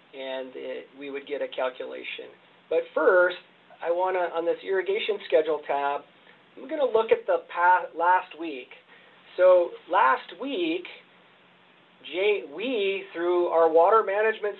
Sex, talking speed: male, 135 wpm